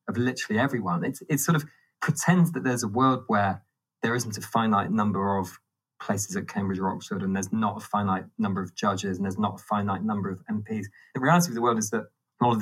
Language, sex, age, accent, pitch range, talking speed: English, male, 20-39, British, 100-145 Hz, 235 wpm